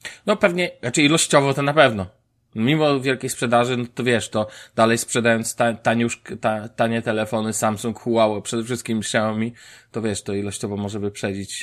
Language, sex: Polish, male